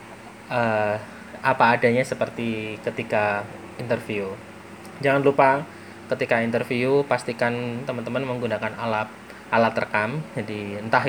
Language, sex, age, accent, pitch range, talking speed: Indonesian, male, 20-39, native, 110-125 Hz, 95 wpm